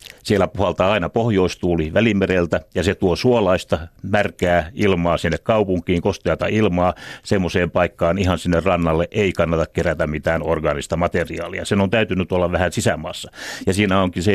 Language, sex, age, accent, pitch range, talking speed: Finnish, male, 60-79, native, 85-100 Hz, 150 wpm